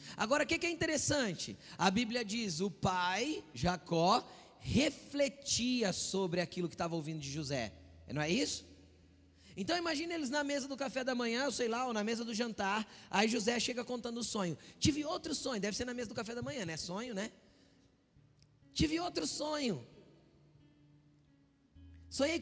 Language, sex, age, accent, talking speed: Portuguese, male, 20-39, Brazilian, 165 wpm